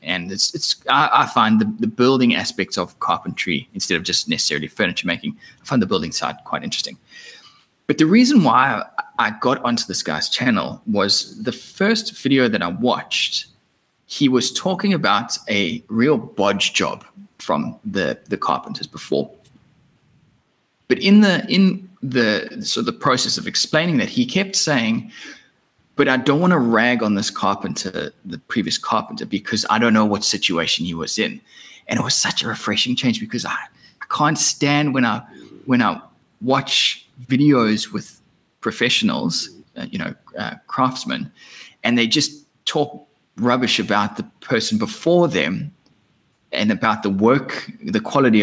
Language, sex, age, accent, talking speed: English, male, 20-39, Australian, 160 wpm